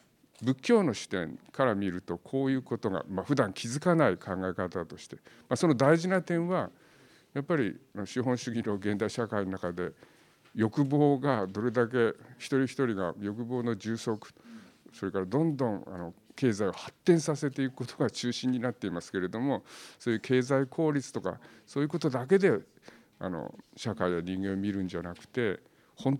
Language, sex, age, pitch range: Japanese, male, 50-69, 105-150 Hz